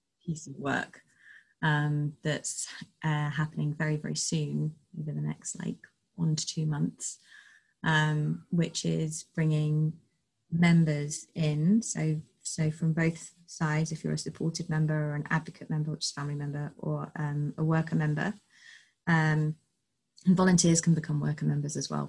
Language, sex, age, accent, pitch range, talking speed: English, female, 20-39, British, 150-170 Hz, 150 wpm